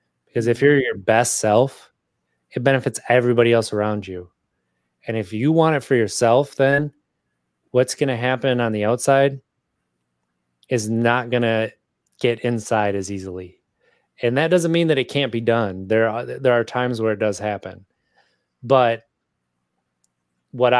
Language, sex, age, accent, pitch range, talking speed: English, male, 20-39, American, 95-120 Hz, 160 wpm